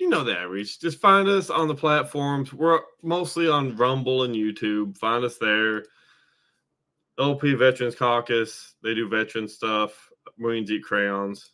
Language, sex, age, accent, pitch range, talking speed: English, male, 20-39, American, 110-145 Hz, 150 wpm